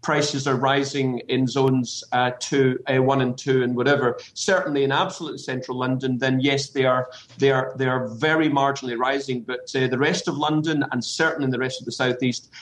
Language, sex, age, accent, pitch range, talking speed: English, male, 40-59, British, 130-160 Hz, 205 wpm